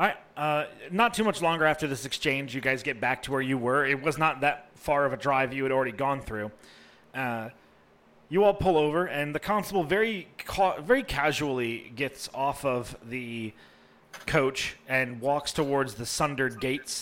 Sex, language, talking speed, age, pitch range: male, English, 190 wpm, 30-49, 120-165 Hz